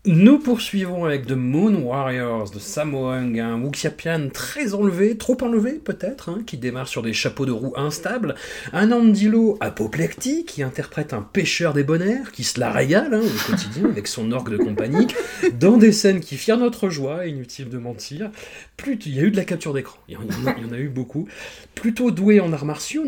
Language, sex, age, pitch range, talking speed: French, male, 30-49, 125-195 Hz, 205 wpm